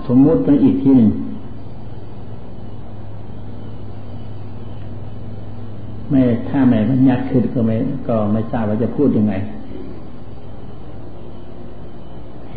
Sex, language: male, Thai